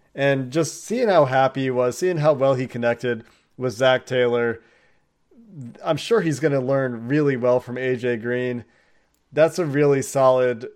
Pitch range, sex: 125-140 Hz, male